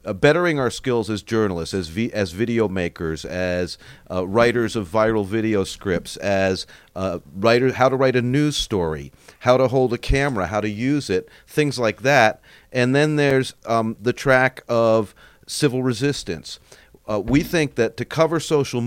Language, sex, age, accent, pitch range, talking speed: English, male, 40-59, American, 110-150 Hz, 170 wpm